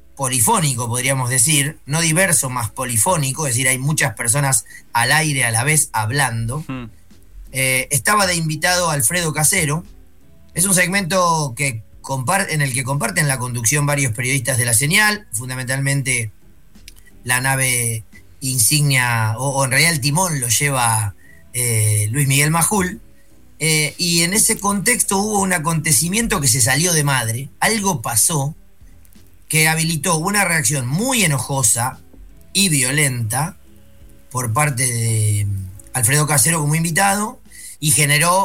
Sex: male